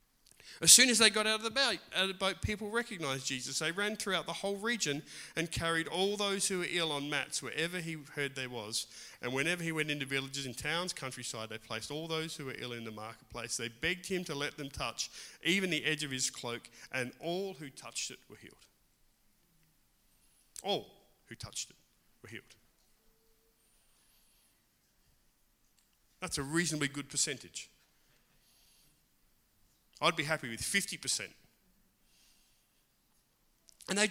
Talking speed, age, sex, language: 160 wpm, 40-59, male, English